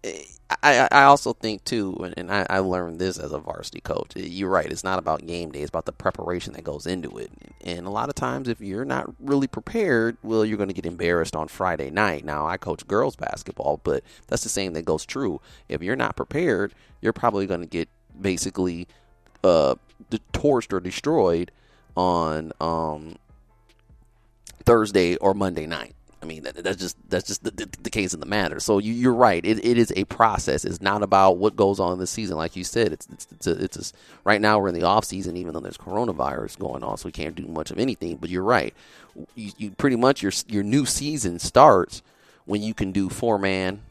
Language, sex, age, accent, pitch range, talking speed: English, male, 30-49, American, 90-110 Hz, 210 wpm